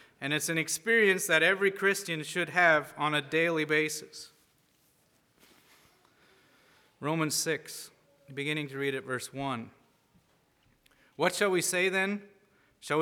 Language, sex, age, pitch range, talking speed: English, male, 30-49, 150-205 Hz, 125 wpm